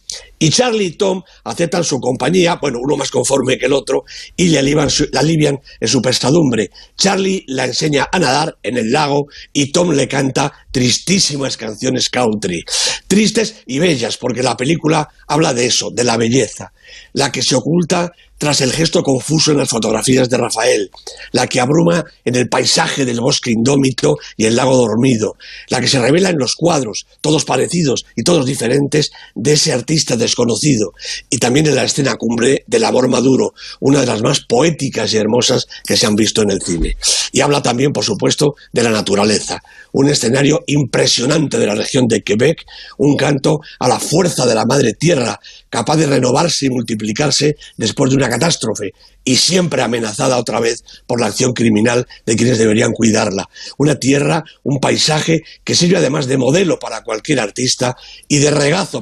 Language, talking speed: Spanish, 175 wpm